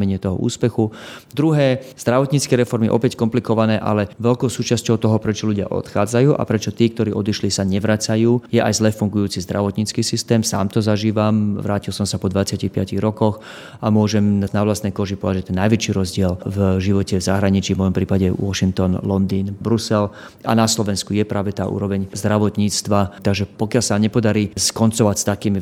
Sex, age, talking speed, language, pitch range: male, 30-49, 165 wpm, Slovak, 100-110 Hz